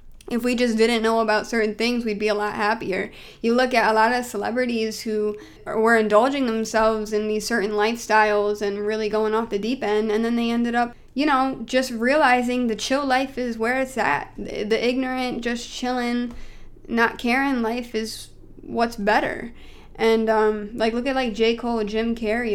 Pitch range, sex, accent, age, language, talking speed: 215-250 Hz, female, American, 10-29, English, 190 wpm